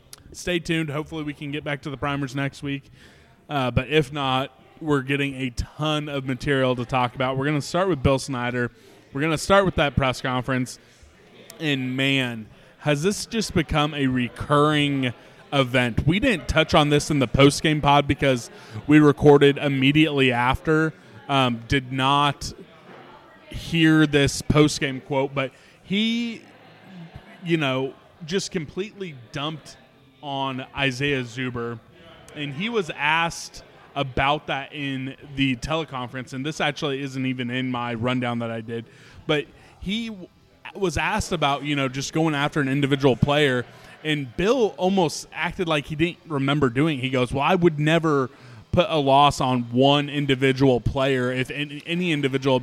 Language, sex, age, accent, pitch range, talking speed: English, male, 20-39, American, 130-155 Hz, 155 wpm